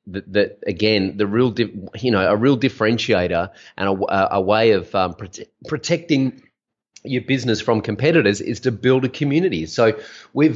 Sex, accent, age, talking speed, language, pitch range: male, Australian, 30-49, 165 wpm, English, 100-120 Hz